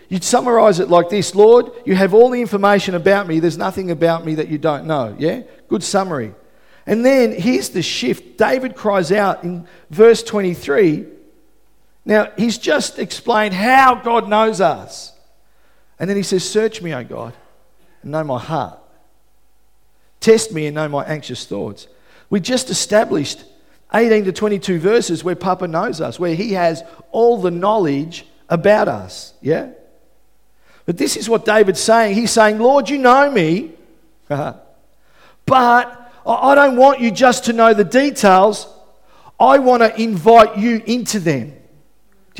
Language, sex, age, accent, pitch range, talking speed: English, male, 50-69, Australian, 180-235 Hz, 160 wpm